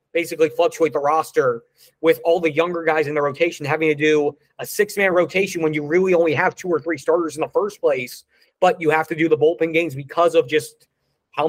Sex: male